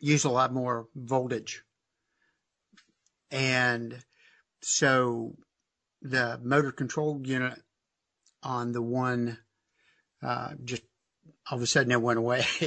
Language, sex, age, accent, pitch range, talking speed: English, male, 50-69, American, 120-140 Hz, 110 wpm